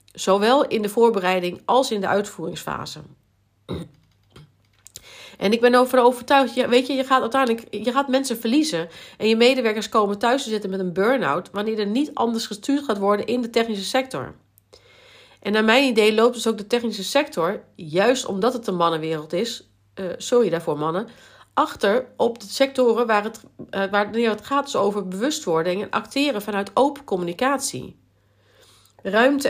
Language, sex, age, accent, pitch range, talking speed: Dutch, female, 40-59, Dutch, 185-245 Hz, 155 wpm